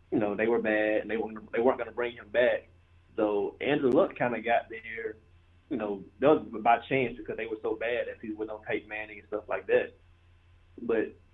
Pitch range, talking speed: 90-125 Hz, 220 wpm